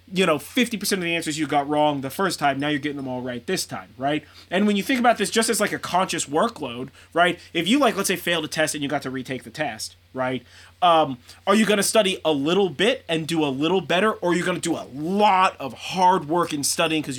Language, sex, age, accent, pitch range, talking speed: English, male, 30-49, American, 140-175 Hz, 270 wpm